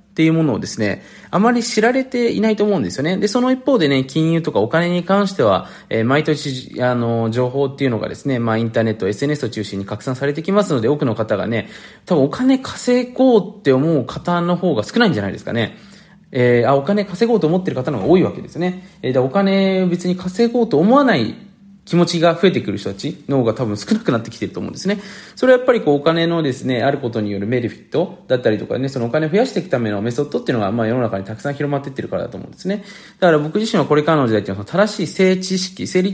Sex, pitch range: male, 120-195 Hz